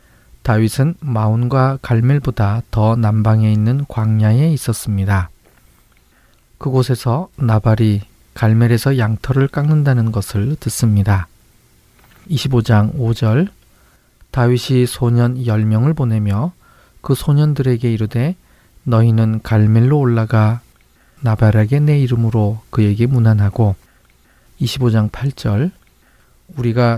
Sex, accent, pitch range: male, native, 105-130 Hz